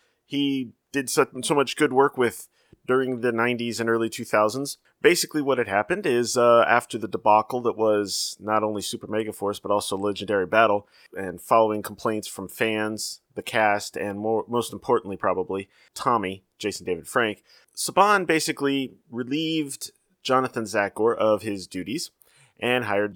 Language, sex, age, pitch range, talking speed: English, male, 30-49, 105-125 Hz, 155 wpm